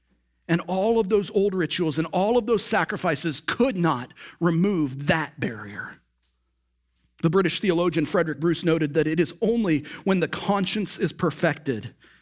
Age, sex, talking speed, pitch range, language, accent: 40-59, male, 150 wpm, 145-190 Hz, English, American